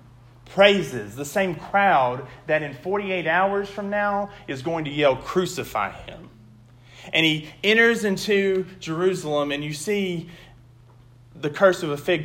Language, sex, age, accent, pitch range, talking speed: English, male, 30-49, American, 120-155 Hz, 140 wpm